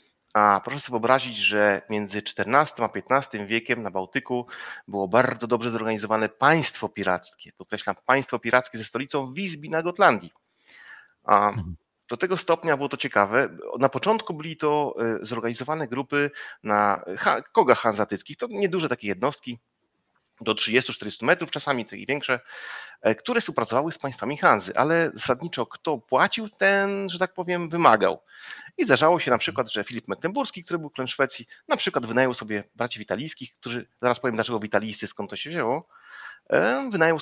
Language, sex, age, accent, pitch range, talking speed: Polish, male, 40-59, native, 110-150 Hz, 150 wpm